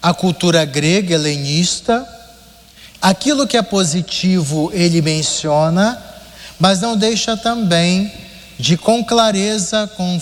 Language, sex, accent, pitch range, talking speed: Portuguese, male, Brazilian, 155-210 Hz, 105 wpm